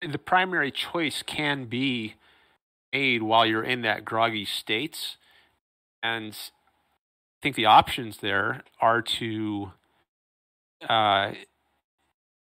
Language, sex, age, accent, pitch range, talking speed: English, male, 30-49, American, 105-130 Hz, 100 wpm